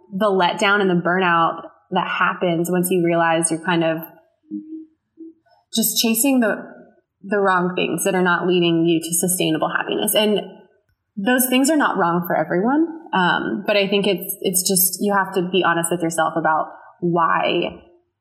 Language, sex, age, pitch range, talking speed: English, female, 20-39, 175-210 Hz, 170 wpm